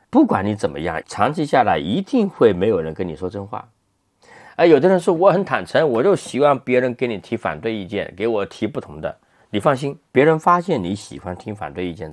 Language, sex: Chinese, male